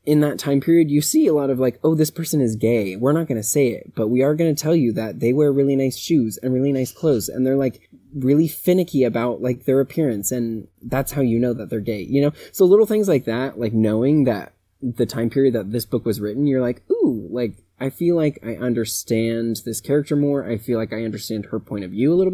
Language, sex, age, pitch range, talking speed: English, male, 20-39, 115-150 Hz, 260 wpm